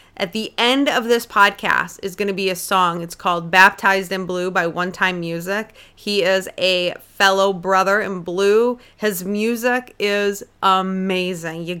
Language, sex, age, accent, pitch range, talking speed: English, female, 30-49, American, 170-200 Hz, 170 wpm